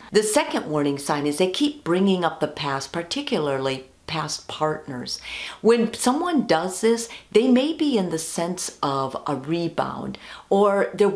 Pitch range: 150-215 Hz